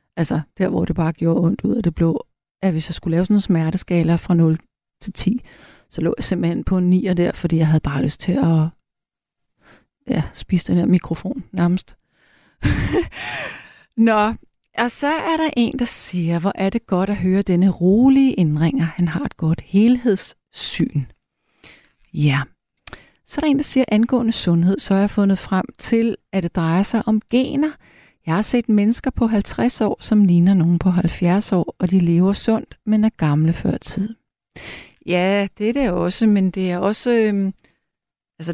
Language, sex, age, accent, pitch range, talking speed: Danish, female, 30-49, native, 170-210 Hz, 185 wpm